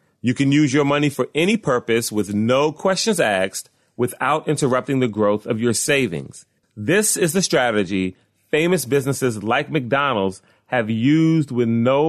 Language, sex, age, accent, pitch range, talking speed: English, male, 30-49, American, 110-150 Hz, 155 wpm